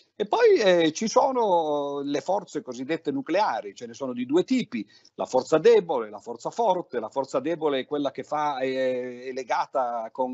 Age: 50-69